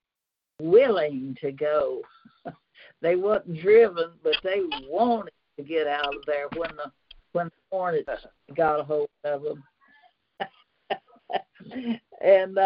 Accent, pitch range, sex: American, 160-235 Hz, female